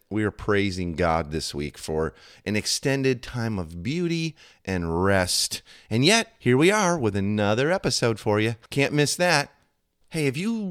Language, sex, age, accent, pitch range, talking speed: English, male, 30-49, American, 100-130 Hz, 170 wpm